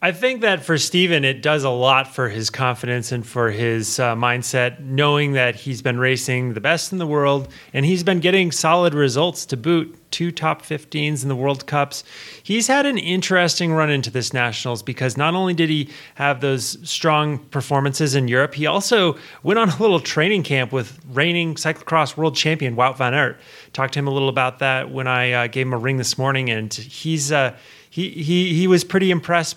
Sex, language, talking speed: male, English, 205 wpm